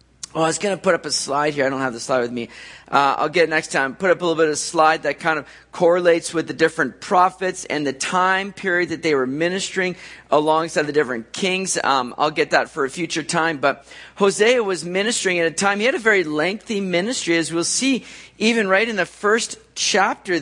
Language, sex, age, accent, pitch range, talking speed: English, male, 40-59, American, 155-200 Hz, 240 wpm